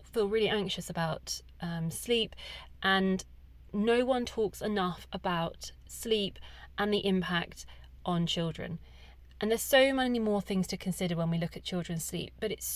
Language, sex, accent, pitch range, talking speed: English, female, British, 185-220 Hz, 160 wpm